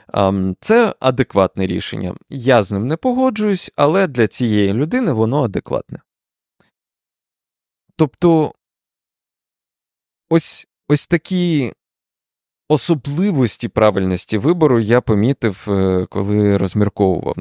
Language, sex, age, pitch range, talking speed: Ukrainian, male, 20-39, 100-145 Hz, 85 wpm